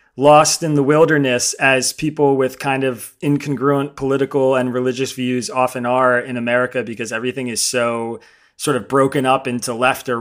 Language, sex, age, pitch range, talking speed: English, male, 30-49, 125-145 Hz, 170 wpm